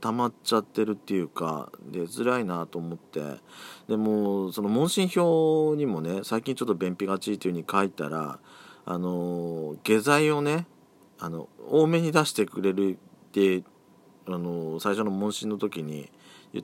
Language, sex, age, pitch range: Japanese, male, 40-59, 90-150 Hz